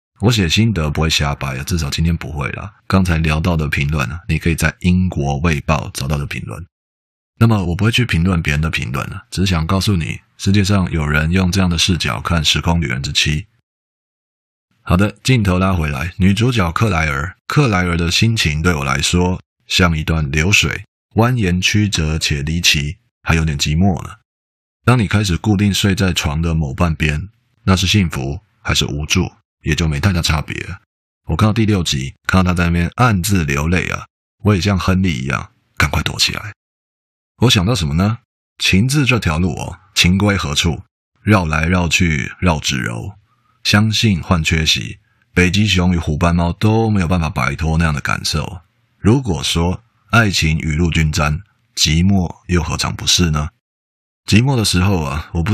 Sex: male